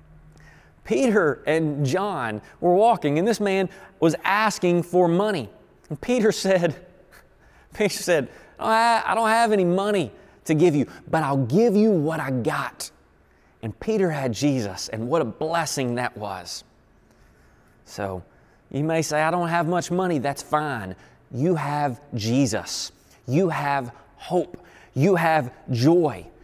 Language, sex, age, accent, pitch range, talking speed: English, male, 30-49, American, 130-185 Hz, 145 wpm